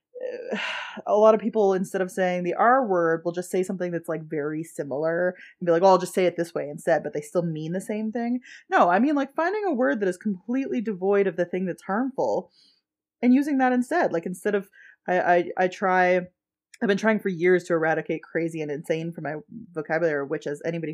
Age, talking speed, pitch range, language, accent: 20-39, 225 wpm, 170-220 Hz, English, American